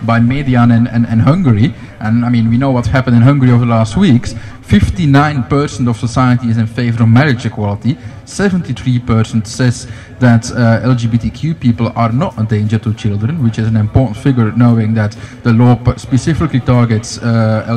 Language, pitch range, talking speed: Danish, 115-130 Hz, 180 wpm